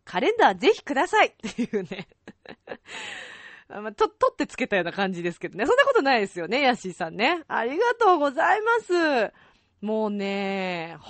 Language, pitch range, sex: Japanese, 175-285 Hz, female